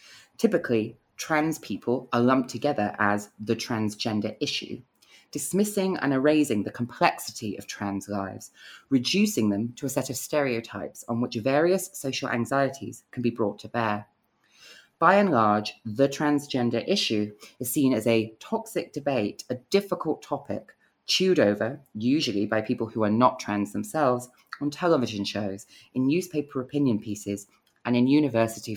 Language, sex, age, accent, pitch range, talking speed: English, female, 20-39, British, 105-145 Hz, 145 wpm